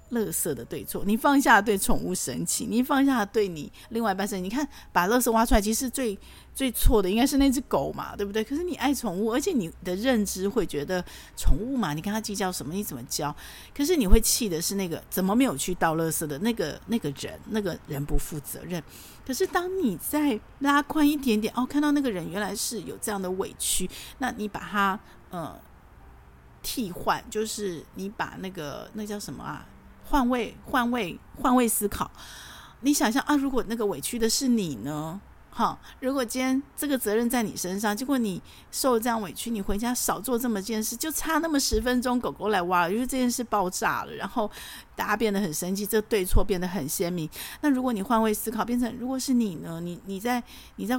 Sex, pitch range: female, 190-250 Hz